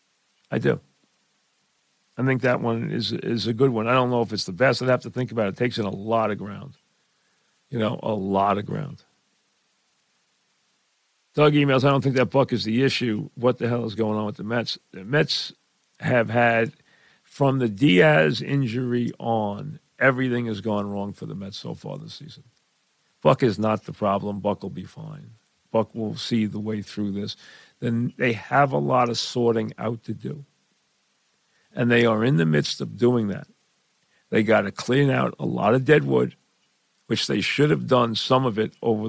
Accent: American